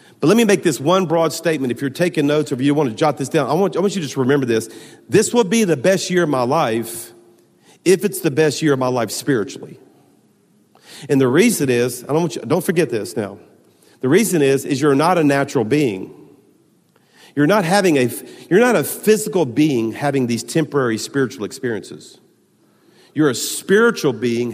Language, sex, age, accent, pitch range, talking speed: English, male, 40-59, American, 120-165 Hz, 210 wpm